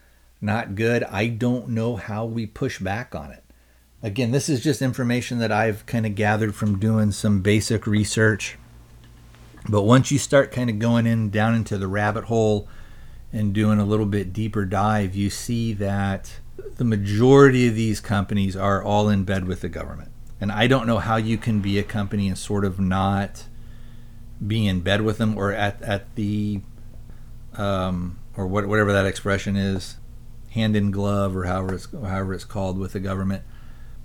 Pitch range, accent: 100-120 Hz, American